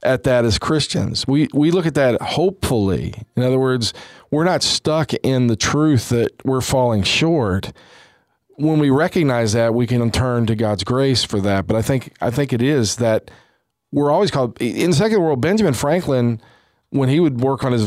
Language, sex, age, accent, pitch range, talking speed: English, male, 40-59, American, 115-145 Hz, 195 wpm